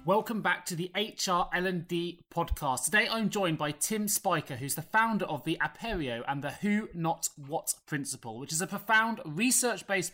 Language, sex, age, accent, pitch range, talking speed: English, male, 30-49, British, 160-215 Hz, 180 wpm